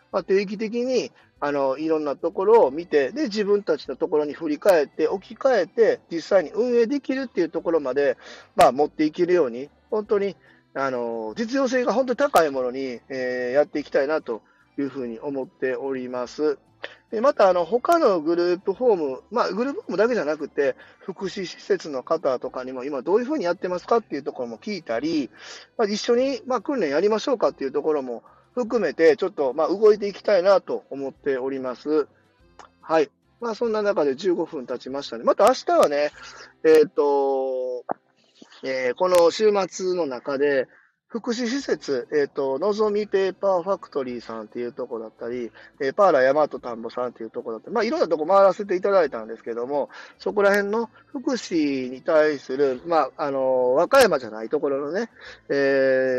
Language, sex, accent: Japanese, male, native